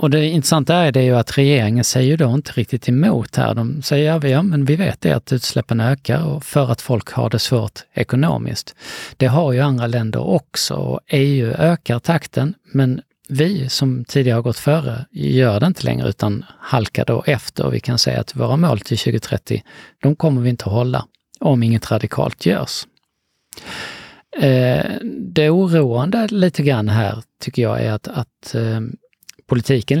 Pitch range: 115-145 Hz